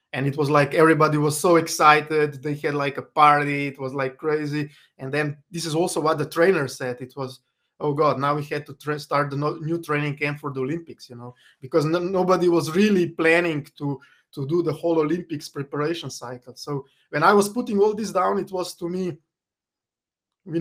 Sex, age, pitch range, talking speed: male, 20-39, 135-165 Hz, 205 wpm